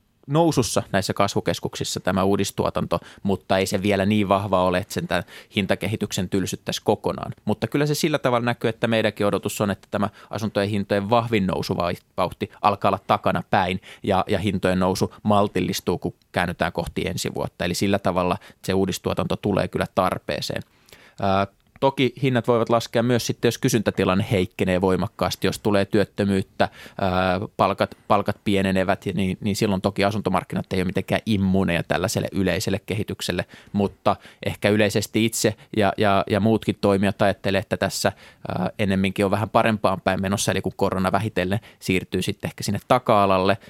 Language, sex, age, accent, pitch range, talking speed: Finnish, male, 20-39, native, 95-110 Hz, 155 wpm